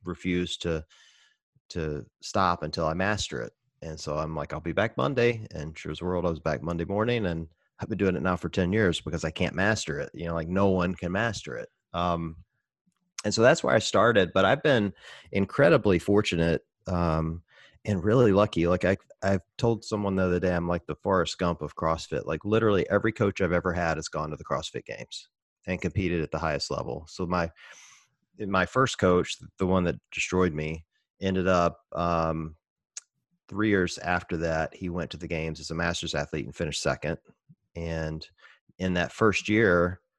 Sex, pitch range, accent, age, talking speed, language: male, 80-95 Hz, American, 30-49, 195 wpm, English